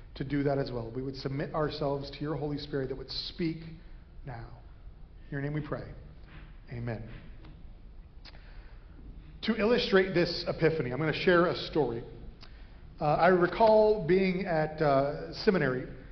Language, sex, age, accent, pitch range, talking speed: English, male, 40-59, American, 150-195 Hz, 155 wpm